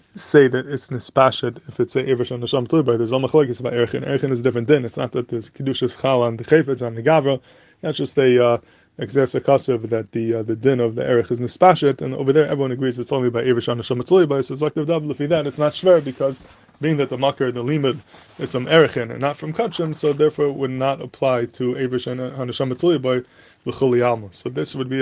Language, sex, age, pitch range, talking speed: English, male, 20-39, 125-145 Hz, 235 wpm